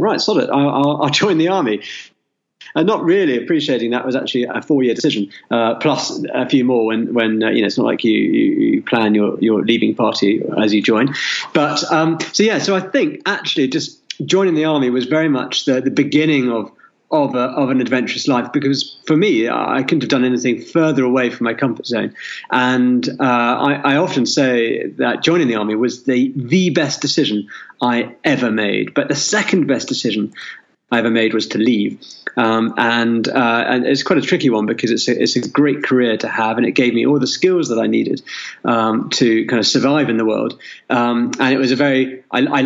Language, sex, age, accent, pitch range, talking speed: English, male, 40-59, British, 120-160 Hz, 210 wpm